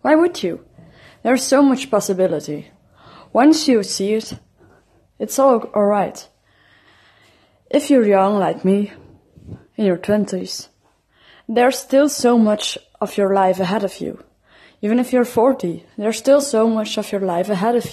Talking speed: 155 wpm